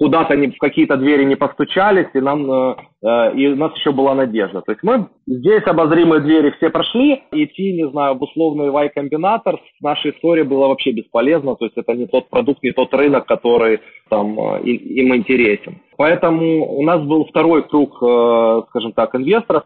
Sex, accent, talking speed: male, native, 175 wpm